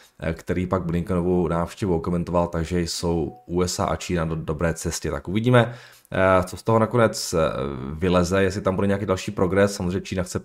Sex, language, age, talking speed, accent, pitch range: male, Czech, 20-39, 165 wpm, native, 90-105 Hz